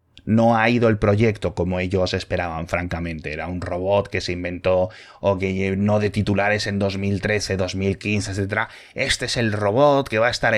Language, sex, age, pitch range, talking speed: Spanish, male, 20-39, 90-105 Hz, 185 wpm